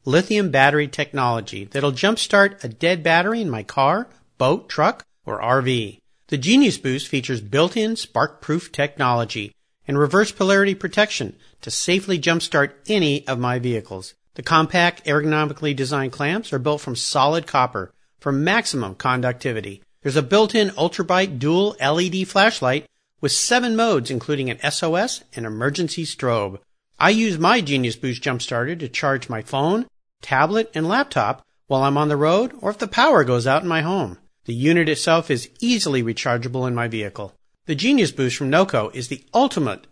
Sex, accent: male, American